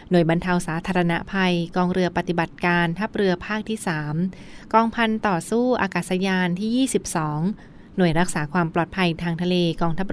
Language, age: Thai, 20-39